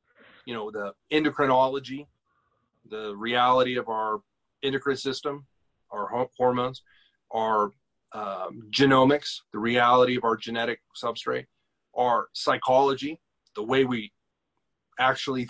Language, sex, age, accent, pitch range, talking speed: English, male, 30-49, American, 120-145 Hz, 105 wpm